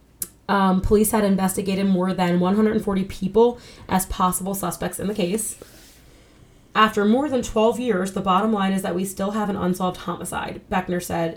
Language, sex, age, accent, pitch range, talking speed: English, female, 20-39, American, 175-205 Hz, 170 wpm